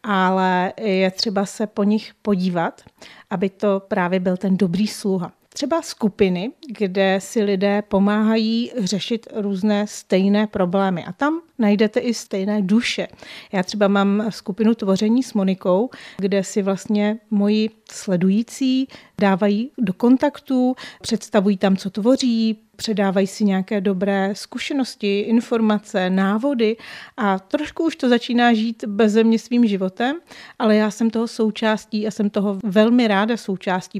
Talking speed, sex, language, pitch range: 135 wpm, female, Czech, 200-230 Hz